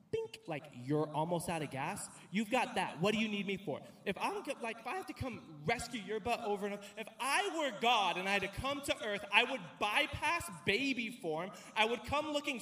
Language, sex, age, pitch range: English, male, 20-39, 165-240 Hz